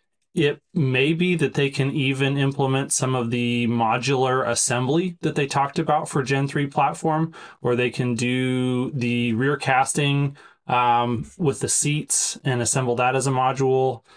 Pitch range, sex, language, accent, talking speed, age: 125-150 Hz, male, English, American, 160 wpm, 20-39